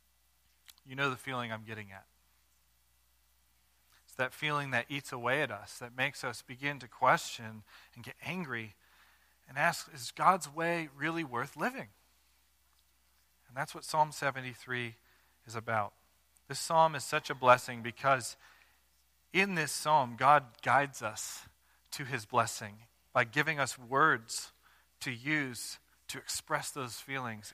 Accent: American